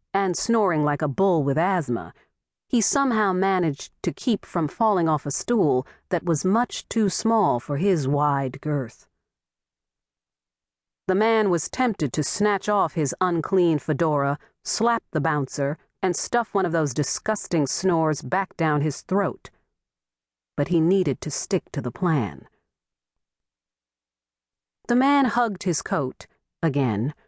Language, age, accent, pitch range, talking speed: English, 40-59, American, 135-190 Hz, 140 wpm